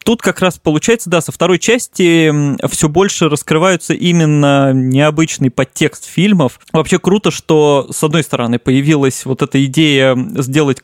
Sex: male